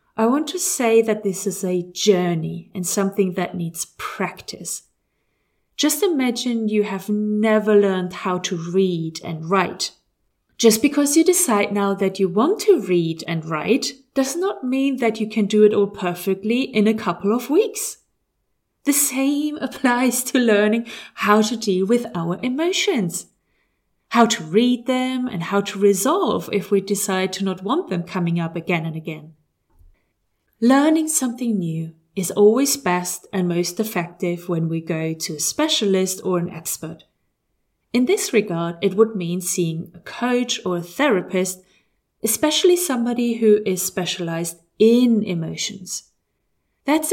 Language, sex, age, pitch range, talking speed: English, female, 30-49, 180-240 Hz, 155 wpm